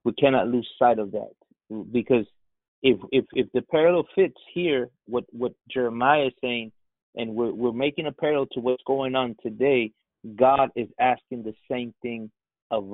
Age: 30-49